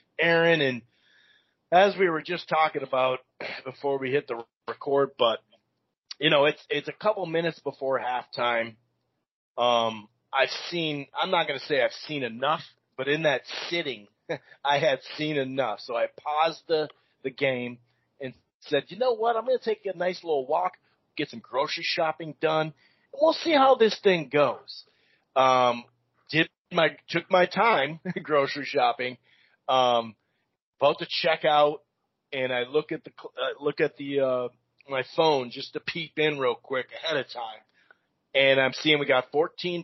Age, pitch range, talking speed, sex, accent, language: 30-49, 130-165 Hz, 165 wpm, male, American, English